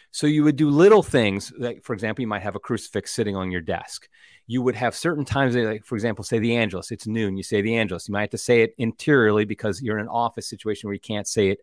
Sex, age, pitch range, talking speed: male, 30-49, 105-140 Hz, 275 wpm